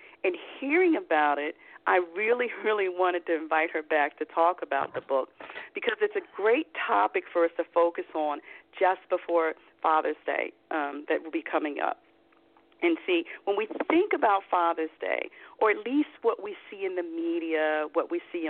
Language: English